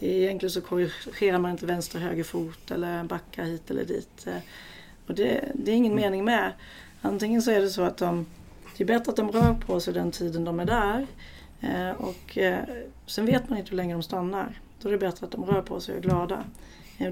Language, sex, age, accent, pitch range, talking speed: Swedish, female, 30-49, native, 180-210 Hz, 210 wpm